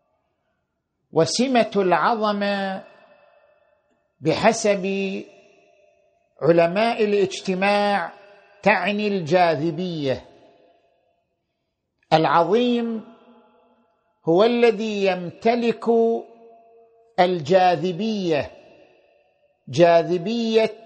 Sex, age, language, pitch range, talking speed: male, 50-69, Arabic, 190-230 Hz, 35 wpm